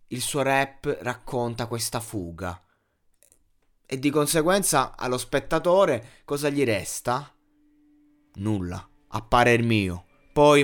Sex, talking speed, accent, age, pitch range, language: male, 105 wpm, native, 20-39, 110-135 Hz, Italian